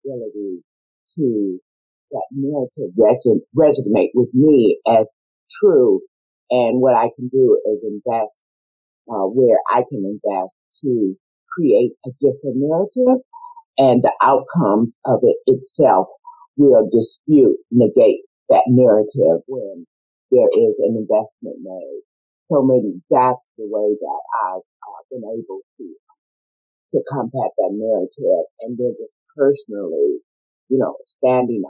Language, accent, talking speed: English, American, 120 wpm